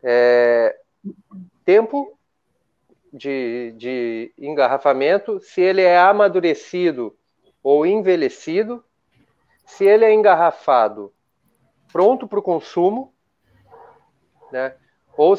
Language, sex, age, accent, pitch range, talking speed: Portuguese, male, 40-59, Brazilian, 145-215 Hz, 75 wpm